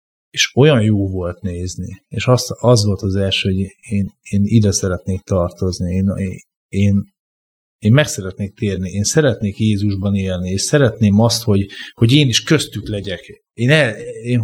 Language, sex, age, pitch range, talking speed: Hungarian, male, 30-49, 95-120 Hz, 160 wpm